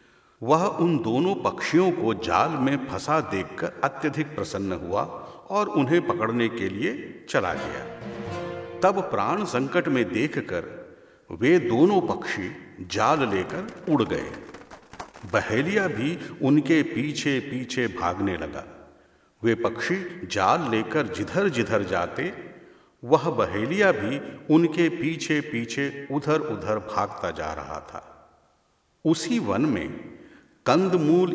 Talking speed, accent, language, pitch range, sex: 120 wpm, native, Hindi, 140-190 Hz, male